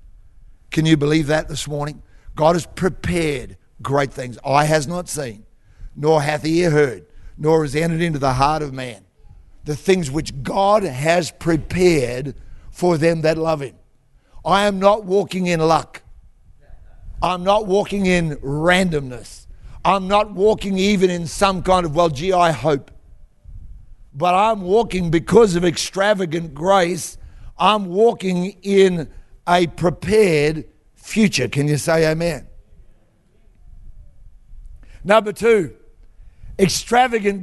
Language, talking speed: English, 130 wpm